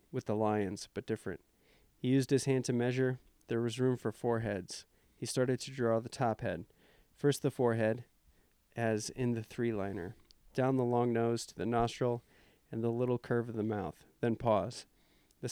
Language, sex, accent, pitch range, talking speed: English, male, American, 115-130 Hz, 190 wpm